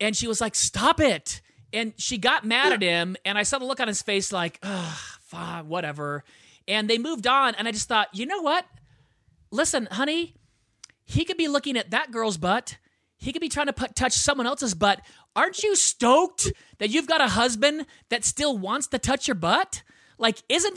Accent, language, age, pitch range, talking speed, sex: American, English, 30-49, 235-320 Hz, 205 wpm, male